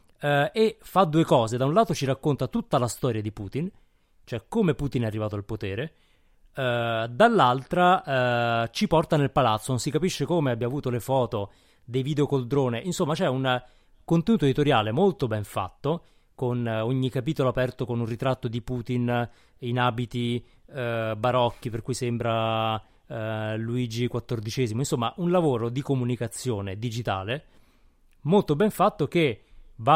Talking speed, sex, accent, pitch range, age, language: 150 wpm, male, native, 115-150 Hz, 30-49, Italian